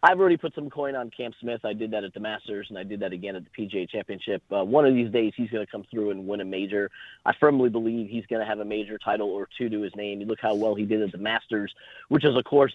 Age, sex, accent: 30-49, male, American